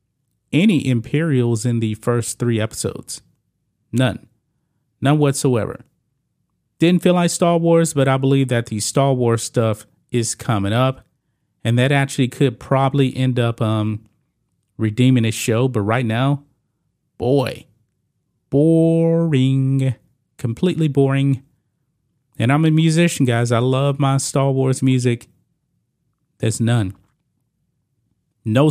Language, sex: English, male